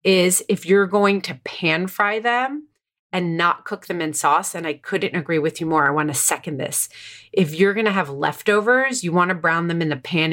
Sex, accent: female, American